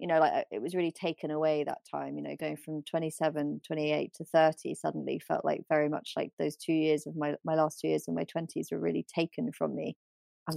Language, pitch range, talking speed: English, 155-185 Hz, 250 wpm